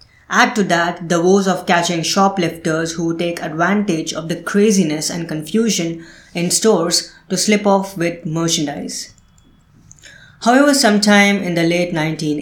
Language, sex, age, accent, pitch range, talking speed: English, female, 20-39, Indian, 160-190 Hz, 135 wpm